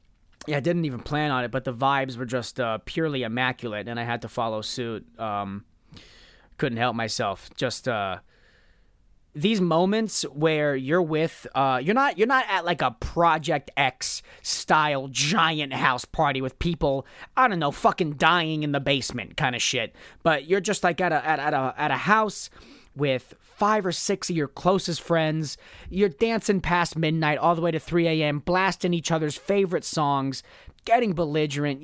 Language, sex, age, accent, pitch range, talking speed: English, male, 20-39, American, 120-180 Hz, 180 wpm